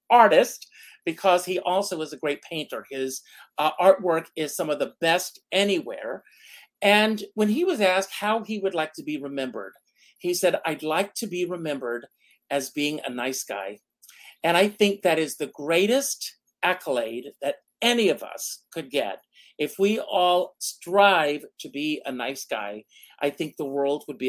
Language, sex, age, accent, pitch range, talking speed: English, male, 50-69, American, 150-210 Hz, 175 wpm